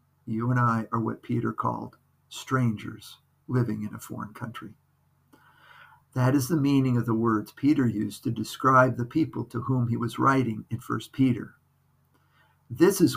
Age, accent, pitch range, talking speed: 50-69, American, 115-140 Hz, 165 wpm